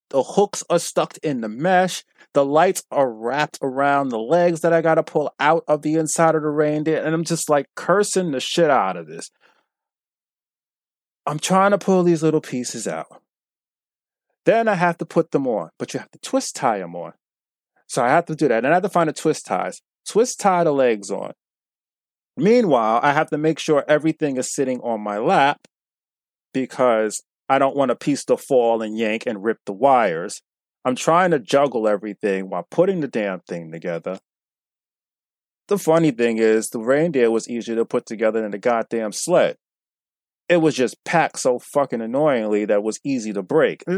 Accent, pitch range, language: American, 125-165 Hz, English